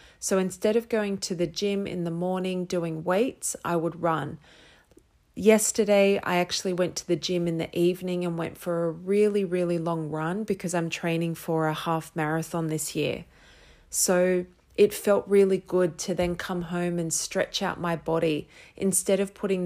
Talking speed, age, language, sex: 180 wpm, 30-49, English, female